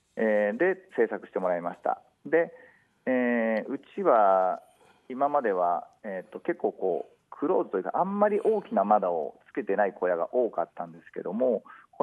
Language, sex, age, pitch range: Japanese, male, 40-59, 115-195 Hz